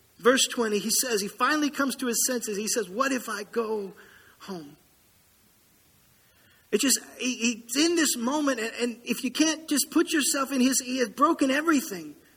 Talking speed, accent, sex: 180 wpm, American, male